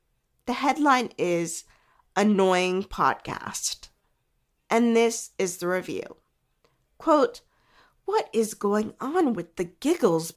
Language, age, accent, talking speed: English, 40-59, American, 105 wpm